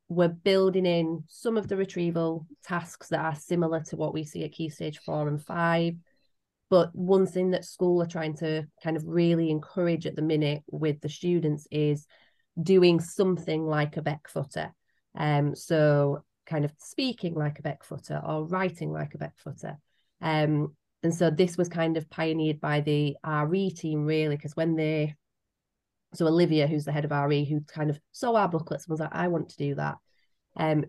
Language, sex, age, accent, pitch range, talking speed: English, female, 30-49, British, 150-170 Hz, 190 wpm